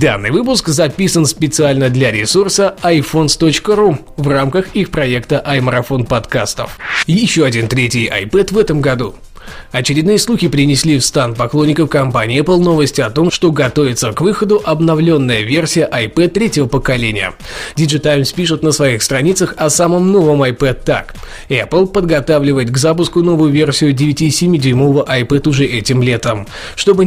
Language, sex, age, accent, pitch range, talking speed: Russian, male, 20-39, native, 135-175 Hz, 135 wpm